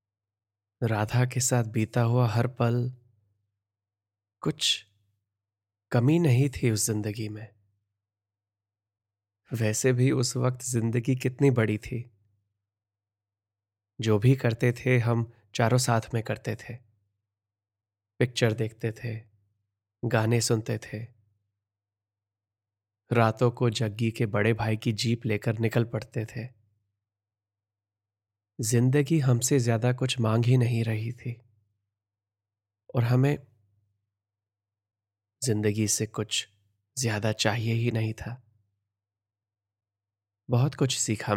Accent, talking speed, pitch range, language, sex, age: native, 105 wpm, 100-120 Hz, Hindi, male, 20-39